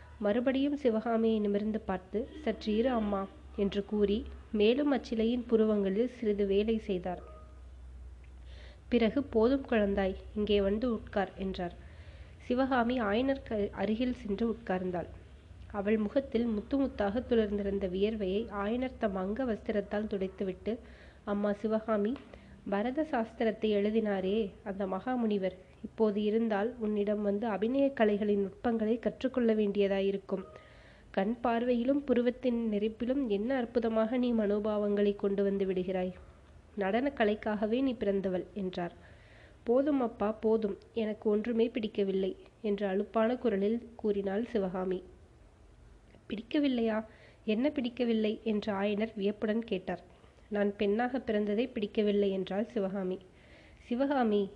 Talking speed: 100 wpm